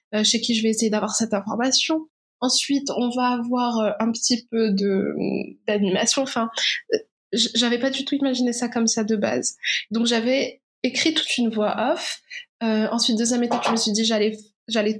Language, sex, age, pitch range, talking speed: French, female, 20-39, 220-255 Hz, 180 wpm